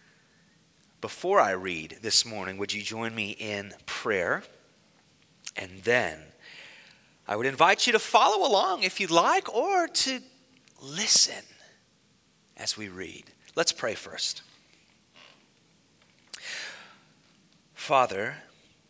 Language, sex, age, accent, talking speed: English, male, 30-49, American, 105 wpm